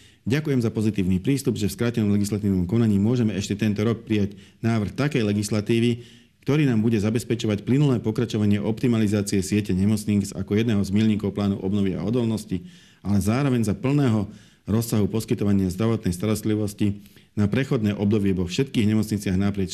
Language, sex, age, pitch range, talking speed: Slovak, male, 40-59, 95-110 Hz, 150 wpm